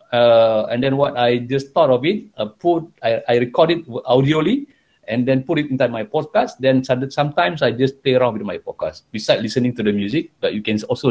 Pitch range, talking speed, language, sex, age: 125-170 Hz, 225 wpm, English, male, 50-69